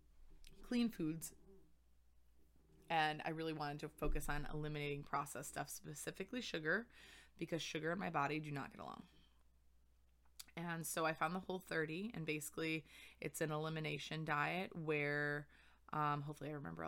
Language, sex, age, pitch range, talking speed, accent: English, female, 20-39, 145-170 Hz, 140 wpm, American